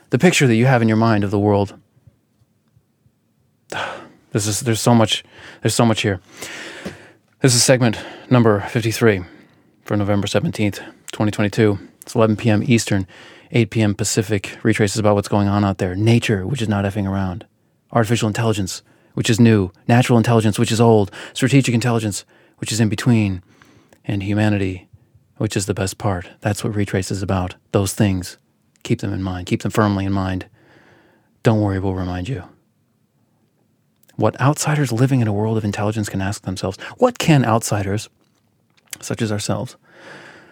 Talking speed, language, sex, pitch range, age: 160 wpm, English, male, 105-120 Hz, 30-49